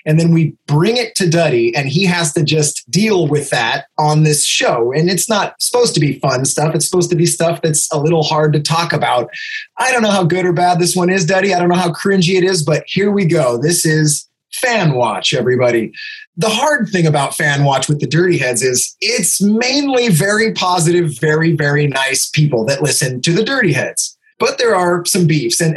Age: 20-39